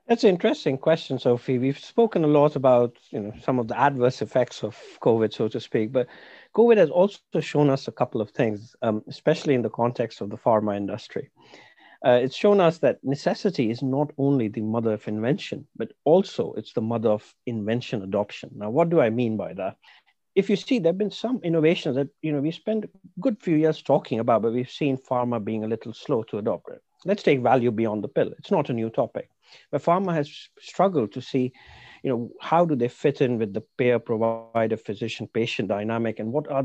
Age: 50-69